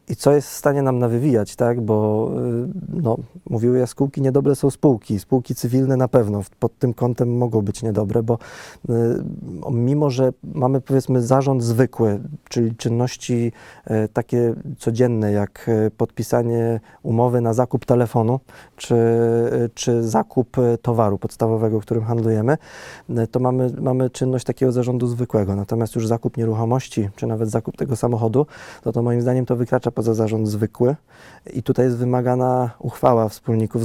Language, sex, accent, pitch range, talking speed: Polish, male, native, 115-130 Hz, 150 wpm